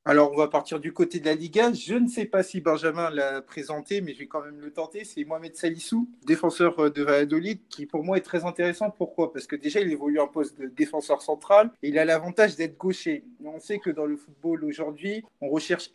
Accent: French